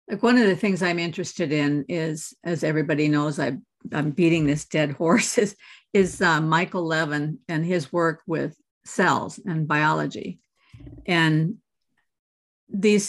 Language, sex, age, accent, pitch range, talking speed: English, female, 50-69, American, 165-225 Hz, 145 wpm